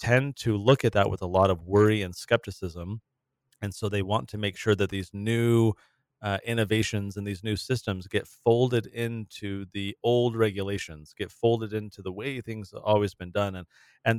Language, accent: English, American